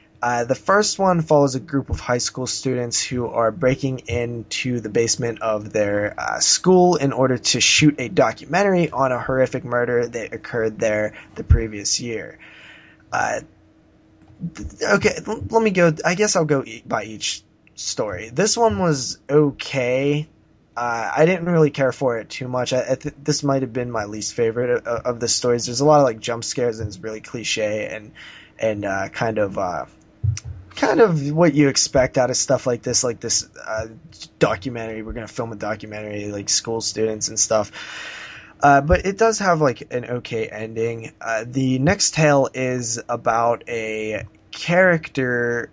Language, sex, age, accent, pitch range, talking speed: English, male, 20-39, American, 110-145 Hz, 180 wpm